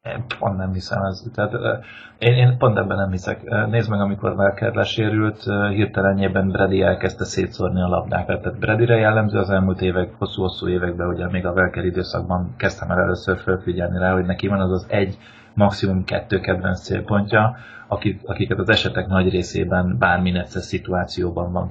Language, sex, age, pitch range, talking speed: Hungarian, male, 30-49, 90-100 Hz, 165 wpm